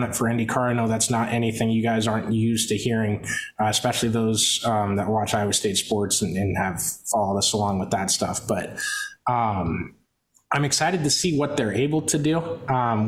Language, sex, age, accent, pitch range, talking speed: English, male, 20-39, American, 110-135 Hz, 200 wpm